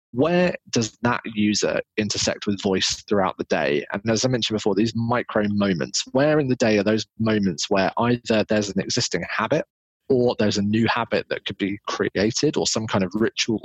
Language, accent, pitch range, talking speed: English, British, 100-125 Hz, 200 wpm